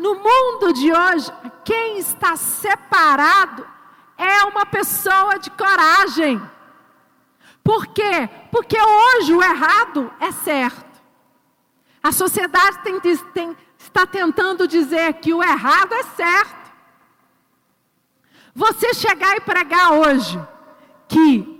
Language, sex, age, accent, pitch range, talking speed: Portuguese, female, 50-69, Brazilian, 295-380 Hz, 100 wpm